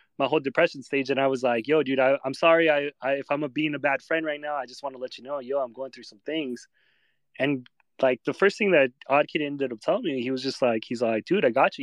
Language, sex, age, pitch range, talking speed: English, male, 20-39, 120-145 Hz, 290 wpm